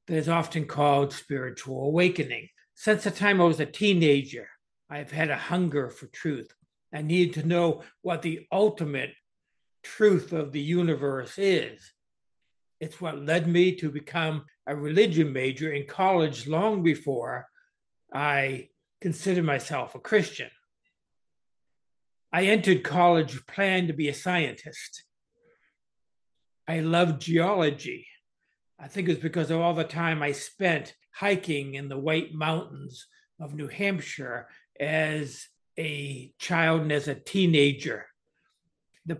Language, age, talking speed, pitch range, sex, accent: English, 60-79, 135 wpm, 150-185 Hz, male, American